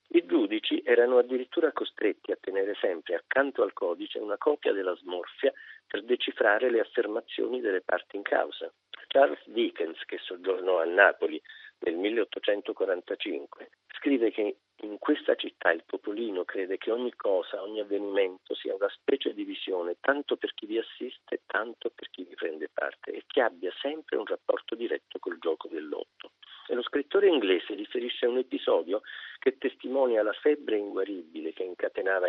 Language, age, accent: Italian, 50-69, native